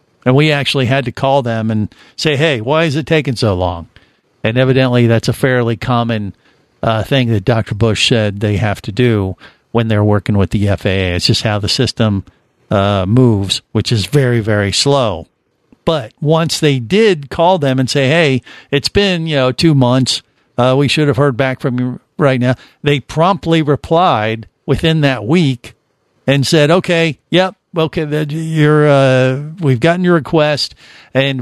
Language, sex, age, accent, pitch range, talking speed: English, male, 50-69, American, 115-150 Hz, 180 wpm